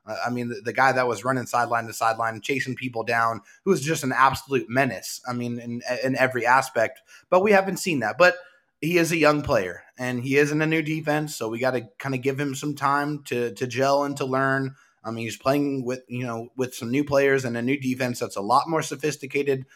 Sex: male